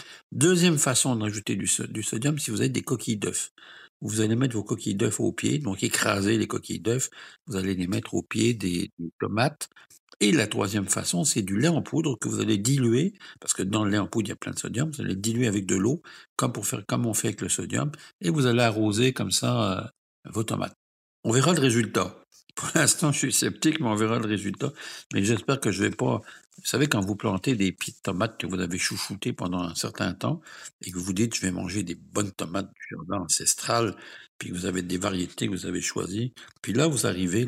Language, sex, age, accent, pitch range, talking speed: French, male, 60-79, French, 95-125 Hz, 240 wpm